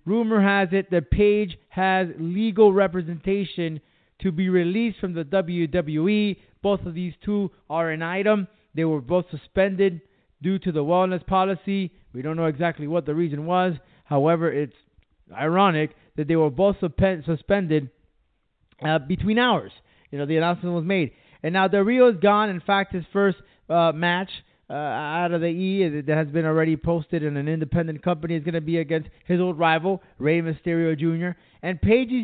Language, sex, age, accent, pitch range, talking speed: English, male, 30-49, American, 160-200 Hz, 175 wpm